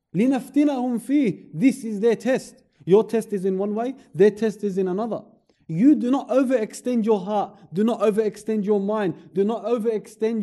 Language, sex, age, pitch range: English, male, 30-49, 160-225 Hz